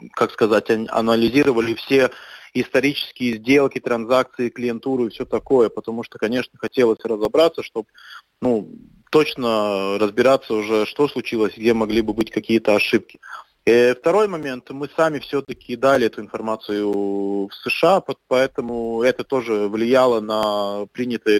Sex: male